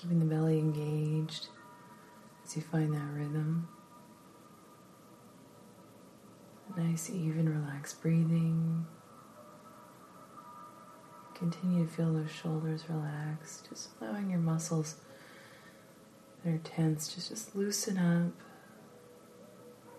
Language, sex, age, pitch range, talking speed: English, female, 30-49, 155-165 Hz, 90 wpm